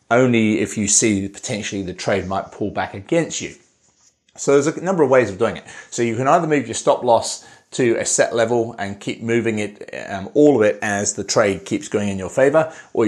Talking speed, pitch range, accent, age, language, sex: 230 wpm, 100-115 Hz, British, 30-49, English, male